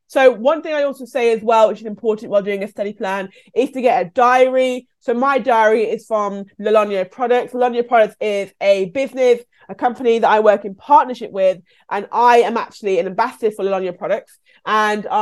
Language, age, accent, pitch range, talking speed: English, 20-39, British, 200-245 Hz, 200 wpm